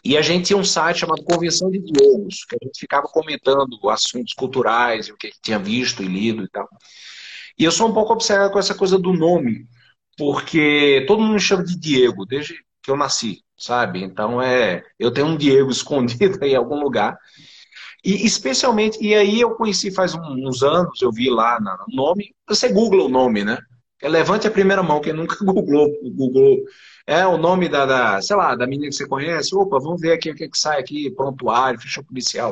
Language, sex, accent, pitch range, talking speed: Portuguese, male, Brazilian, 135-195 Hz, 210 wpm